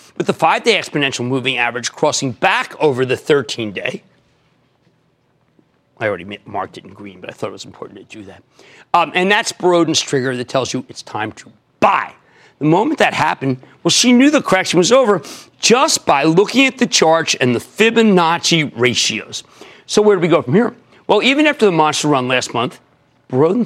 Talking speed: 190 wpm